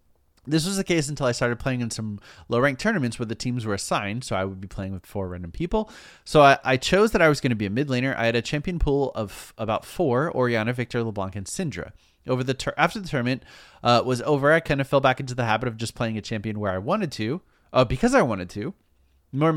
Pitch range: 105-150 Hz